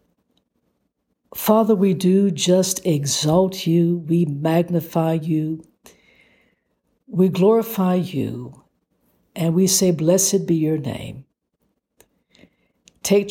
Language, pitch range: English, 160-205 Hz